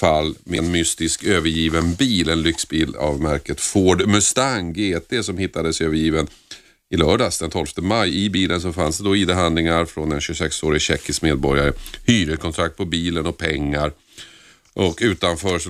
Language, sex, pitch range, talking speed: Swedish, male, 80-100 Hz, 155 wpm